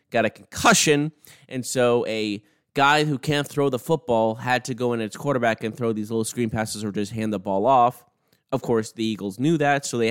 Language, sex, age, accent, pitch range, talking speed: English, male, 20-39, American, 110-145 Hz, 225 wpm